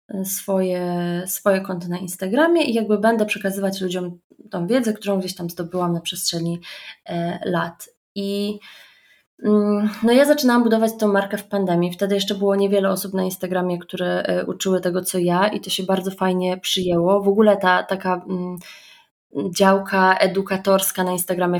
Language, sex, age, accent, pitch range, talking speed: Polish, female, 20-39, native, 185-215 Hz, 150 wpm